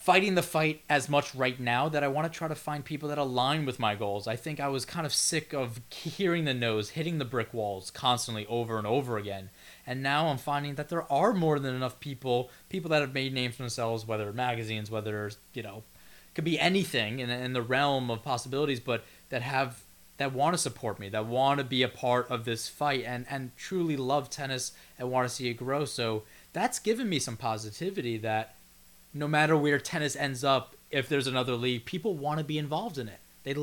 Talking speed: 225 wpm